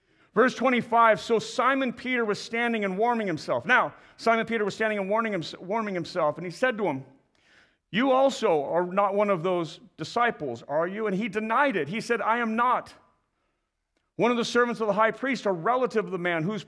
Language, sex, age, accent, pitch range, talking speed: English, male, 50-69, American, 155-230 Hz, 200 wpm